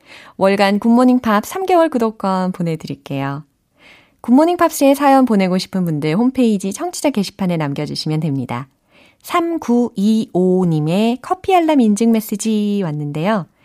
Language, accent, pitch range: Korean, native, 170-255 Hz